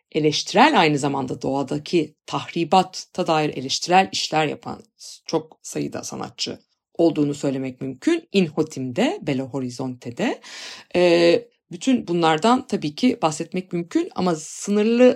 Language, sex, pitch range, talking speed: Turkish, female, 150-195 Hz, 105 wpm